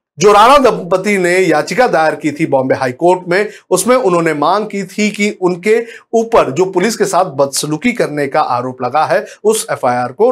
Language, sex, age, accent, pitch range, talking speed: Hindi, male, 50-69, native, 160-235 Hz, 190 wpm